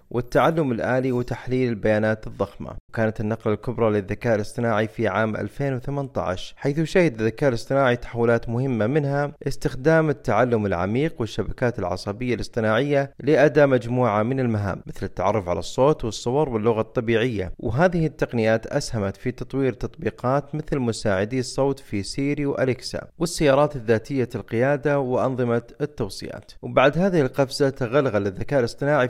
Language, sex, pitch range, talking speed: Arabic, male, 110-140 Hz, 125 wpm